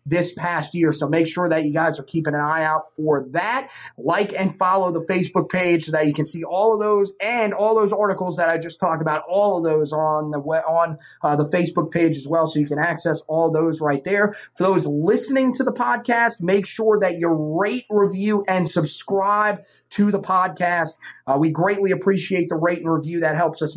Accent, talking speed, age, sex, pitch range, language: American, 220 wpm, 30-49, male, 155-195 Hz, English